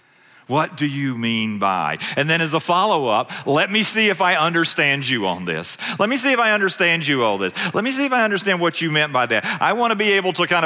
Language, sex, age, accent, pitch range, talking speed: English, male, 50-69, American, 135-190 Hz, 255 wpm